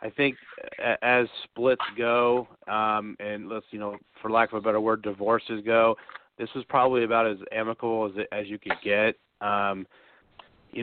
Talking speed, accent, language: 175 wpm, American, English